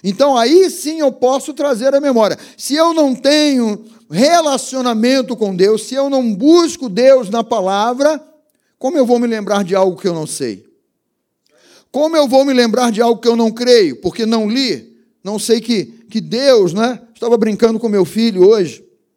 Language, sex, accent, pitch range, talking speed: Portuguese, male, Brazilian, 180-240 Hz, 185 wpm